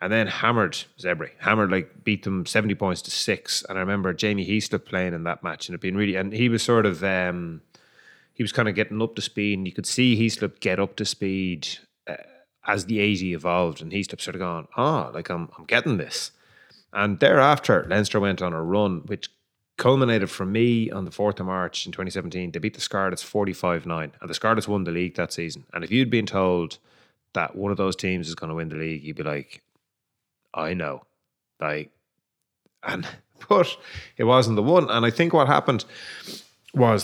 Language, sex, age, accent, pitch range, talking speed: English, male, 30-49, Irish, 90-110 Hz, 210 wpm